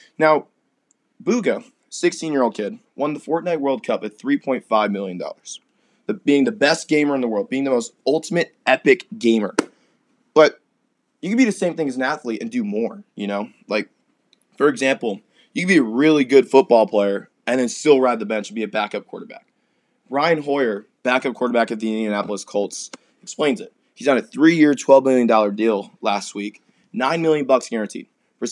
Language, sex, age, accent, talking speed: English, male, 20-39, American, 180 wpm